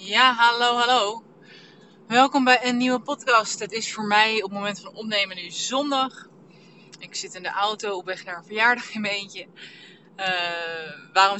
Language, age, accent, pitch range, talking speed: Dutch, 20-39, Dutch, 190-230 Hz, 180 wpm